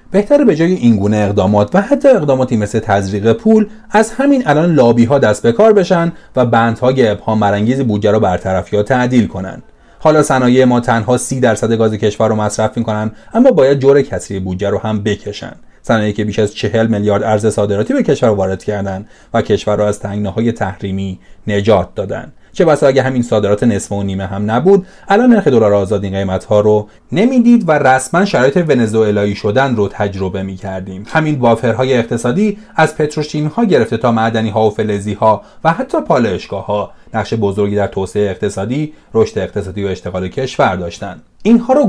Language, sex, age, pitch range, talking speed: Persian, male, 30-49, 100-130 Hz, 175 wpm